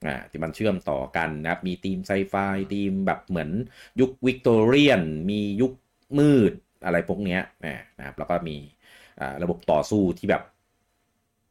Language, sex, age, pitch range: Thai, male, 30-49, 80-105 Hz